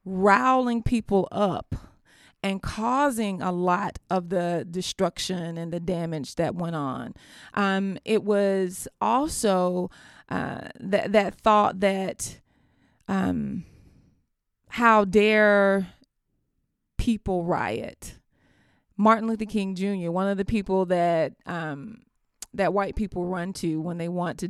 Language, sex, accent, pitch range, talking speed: English, female, American, 185-220 Hz, 120 wpm